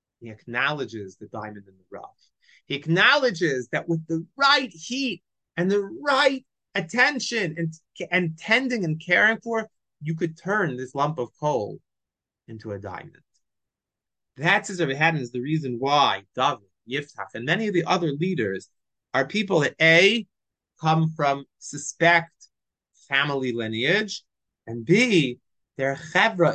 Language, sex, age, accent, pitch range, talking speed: English, male, 30-49, American, 115-180 Hz, 140 wpm